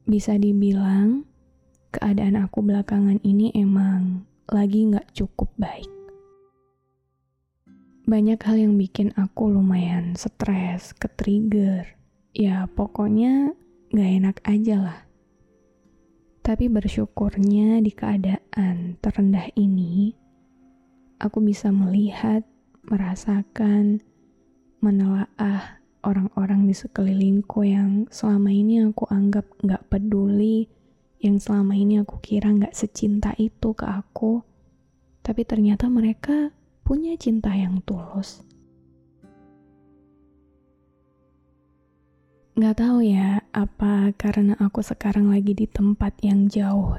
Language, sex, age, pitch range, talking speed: Indonesian, female, 20-39, 195-215 Hz, 95 wpm